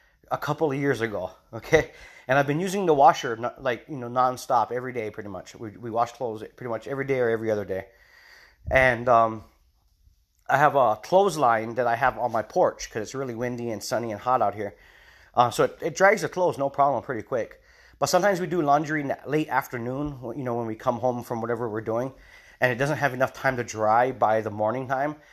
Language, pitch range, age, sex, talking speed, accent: English, 115-145 Hz, 30-49, male, 225 wpm, American